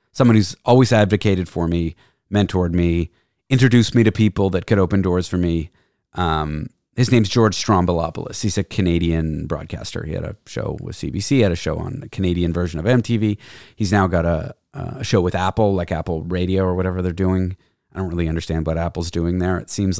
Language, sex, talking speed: English, male, 200 wpm